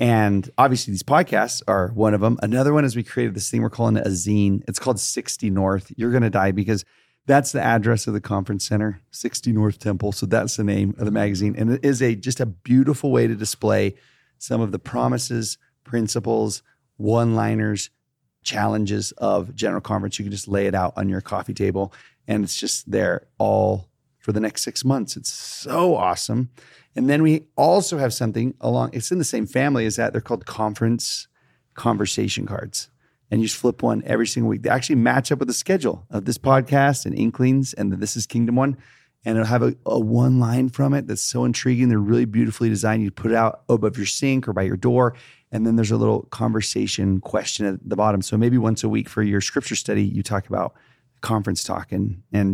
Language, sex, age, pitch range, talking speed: English, male, 30-49, 105-125 Hz, 210 wpm